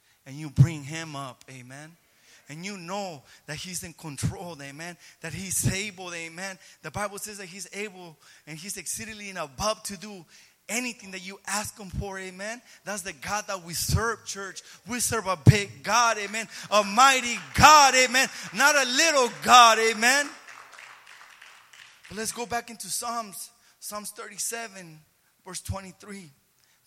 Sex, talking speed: male, 155 wpm